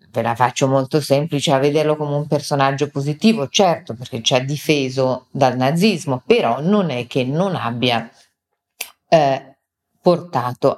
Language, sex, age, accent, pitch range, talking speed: Italian, female, 40-59, native, 140-165 Hz, 145 wpm